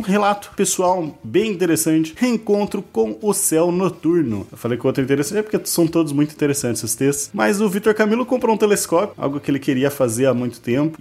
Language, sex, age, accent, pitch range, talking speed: Portuguese, male, 20-39, Brazilian, 130-165 Hz, 215 wpm